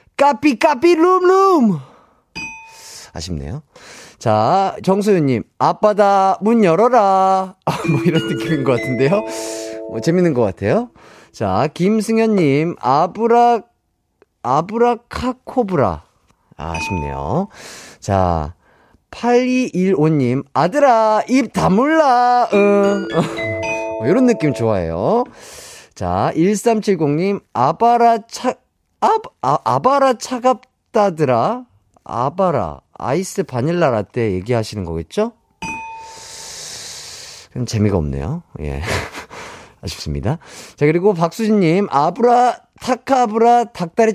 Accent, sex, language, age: native, male, Korean, 30-49